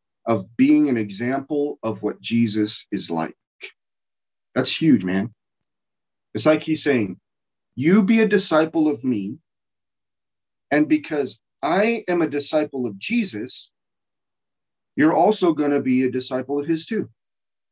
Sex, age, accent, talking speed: male, 40-59, American, 135 wpm